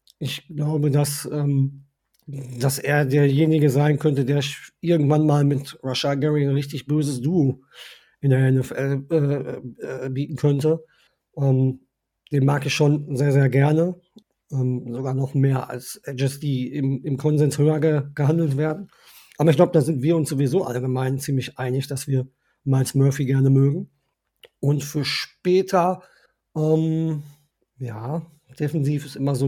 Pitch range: 135-150 Hz